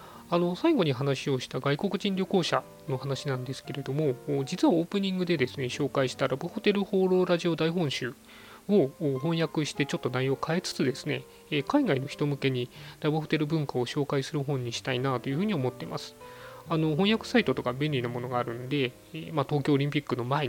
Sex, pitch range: male, 130-165 Hz